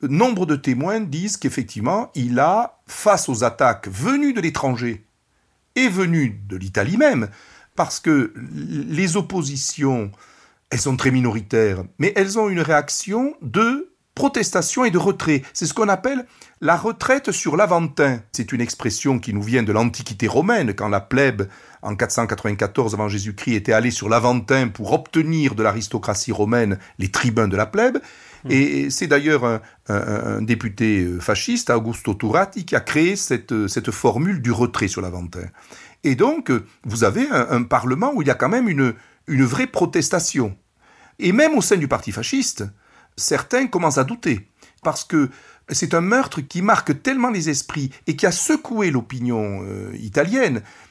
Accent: French